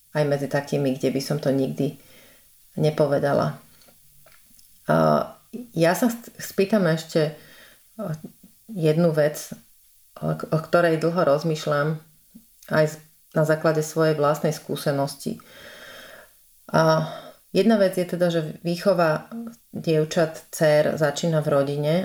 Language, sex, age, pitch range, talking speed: Slovak, female, 30-49, 145-175 Hz, 105 wpm